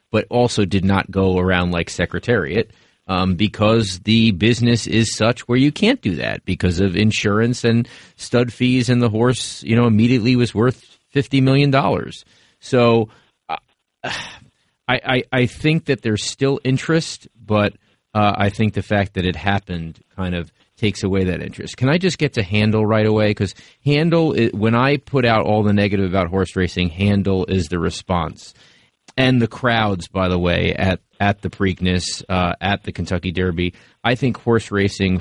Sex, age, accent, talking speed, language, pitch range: male, 30-49, American, 175 wpm, English, 95-115 Hz